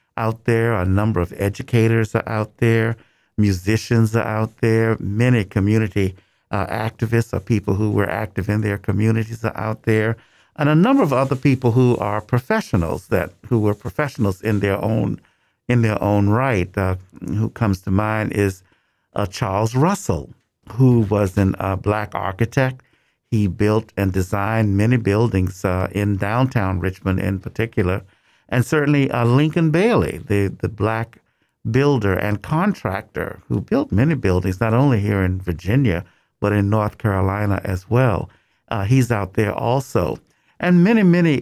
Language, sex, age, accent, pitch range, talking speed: English, male, 50-69, American, 100-120 Hz, 160 wpm